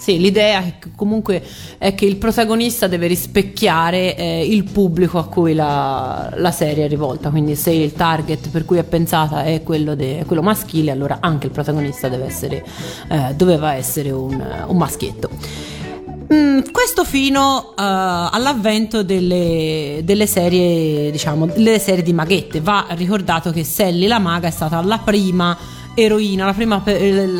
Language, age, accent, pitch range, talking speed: Italian, 30-49, native, 160-200 Hz, 155 wpm